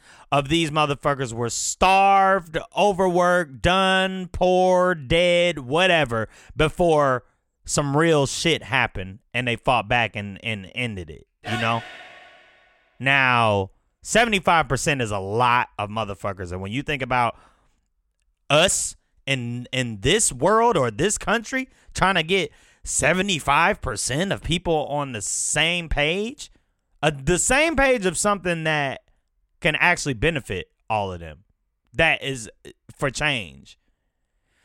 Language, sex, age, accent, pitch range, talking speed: English, male, 30-49, American, 105-165 Hz, 125 wpm